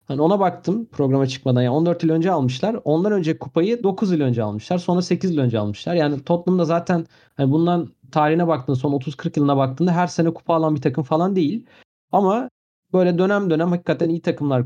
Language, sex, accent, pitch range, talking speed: Turkish, male, native, 135-175 Hz, 195 wpm